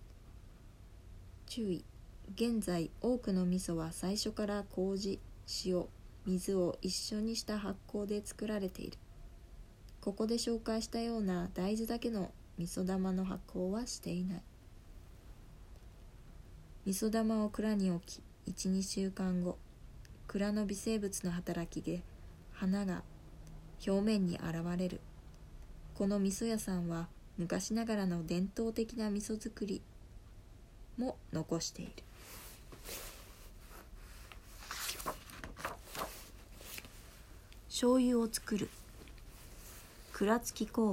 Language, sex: Japanese, female